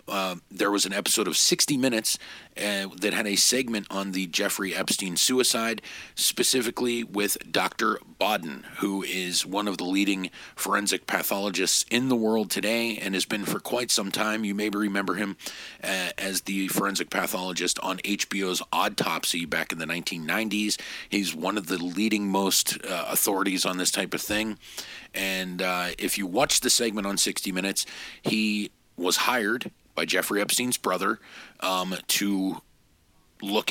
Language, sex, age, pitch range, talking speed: English, male, 40-59, 95-110 Hz, 160 wpm